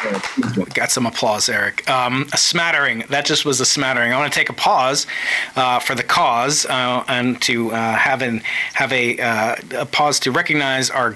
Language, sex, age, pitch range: English, male, 30-49, 125-145 Hz